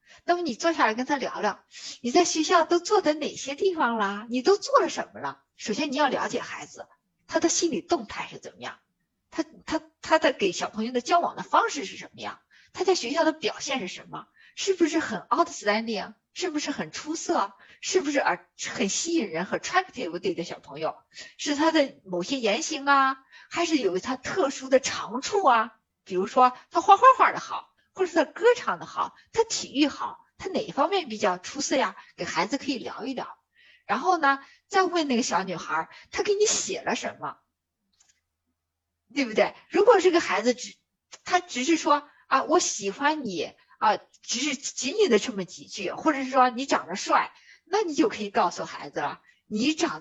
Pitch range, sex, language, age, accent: 235-345 Hz, female, Chinese, 50-69, native